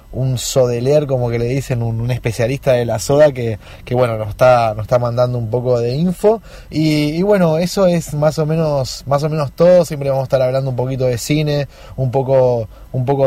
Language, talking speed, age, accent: English, 220 wpm, 20-39, Argentinian